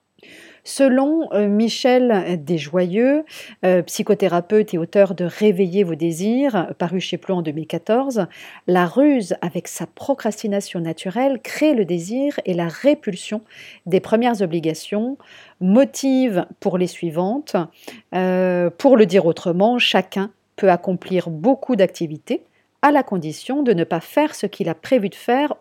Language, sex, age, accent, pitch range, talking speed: French, female, 40-59, French, 175-240 Hz, 135 wpm